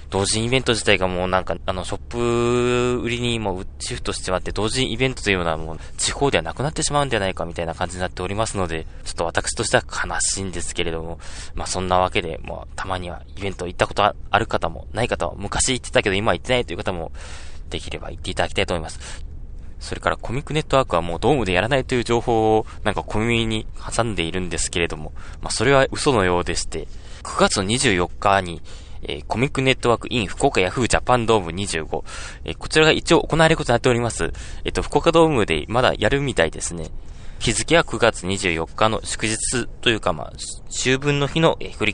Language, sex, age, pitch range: Japanese, male, 20-39, 85-115 Hz